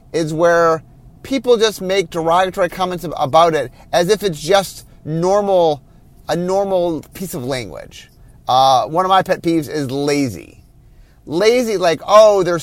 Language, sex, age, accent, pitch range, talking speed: English, male, 30-49, American, 150-210 Hz, 145 wpm